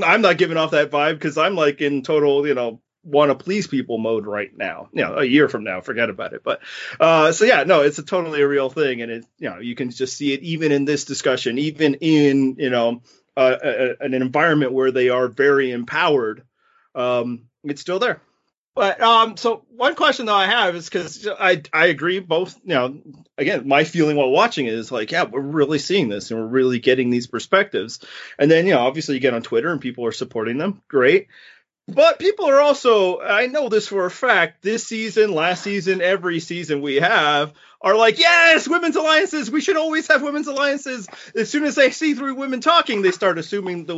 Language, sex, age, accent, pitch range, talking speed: English, male, 30-49, American, 135-215 Hz, 215 wpm